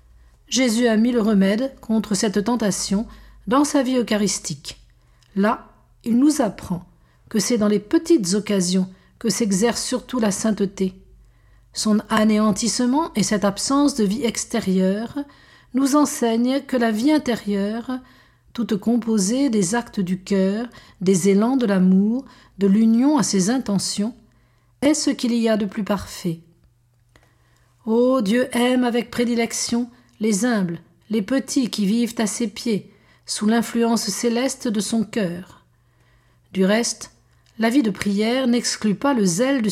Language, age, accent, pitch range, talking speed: French, 50-69, French, 195-245 Hz, 145 wpm